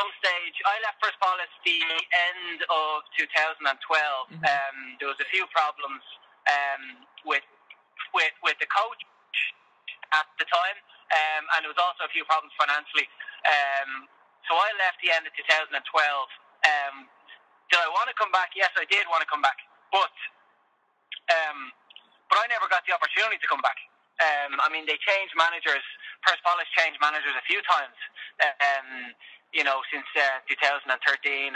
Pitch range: 140-185 Hz